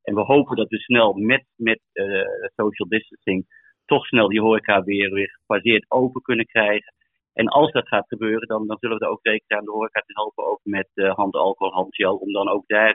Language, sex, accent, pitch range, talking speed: English, male, Dutch, 105-120 Hz, 220 wpm